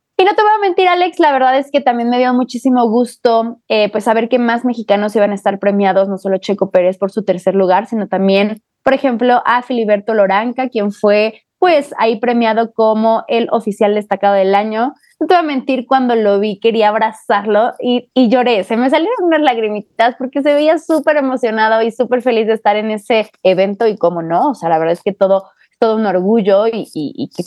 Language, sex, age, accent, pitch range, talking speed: Spanish, female, 20-39, Mexican, 200-255 Hz, 220 wpm